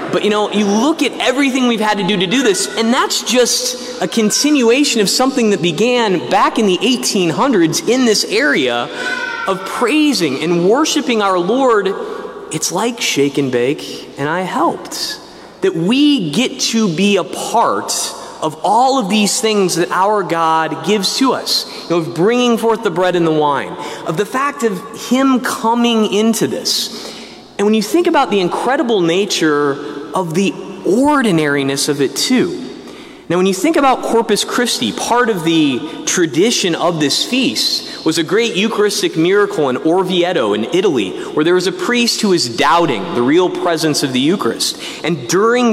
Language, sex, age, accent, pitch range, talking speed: English, male, 30-49, American, 180-255 Hz, 175 wpm